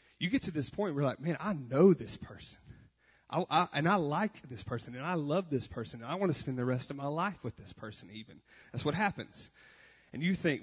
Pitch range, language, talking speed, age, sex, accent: 115-150 Hz, English, 255 wpm, 30-49, male, American